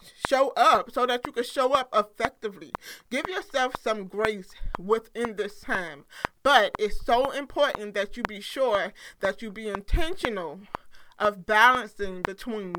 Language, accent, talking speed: English, American, 145 wpm